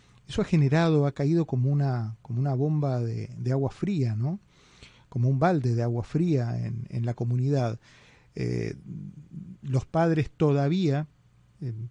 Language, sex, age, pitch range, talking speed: Spanish, male, 30-49, 125-160 Hz, 150 wpm